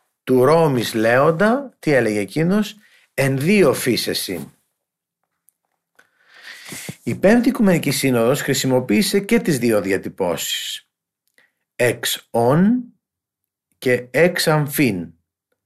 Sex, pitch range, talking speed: male, 115-175 Hz, 90 wpm